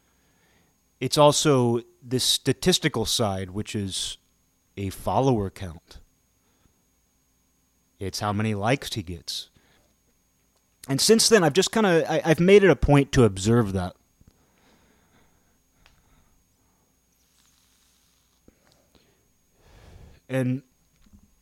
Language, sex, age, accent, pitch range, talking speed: English, male, 30-49, American, 95-130 Hz, 90 wpm